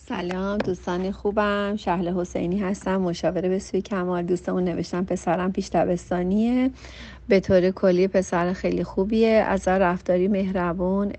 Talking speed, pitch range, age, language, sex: 125 wpm, 175-200 Hz, 40-59, Persian, female